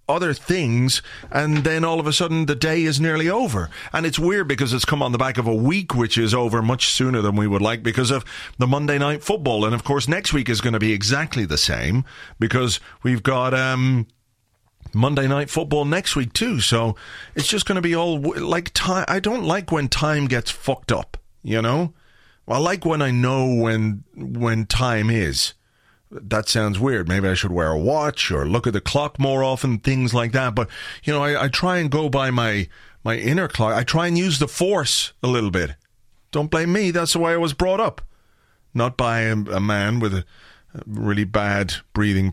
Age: 40-59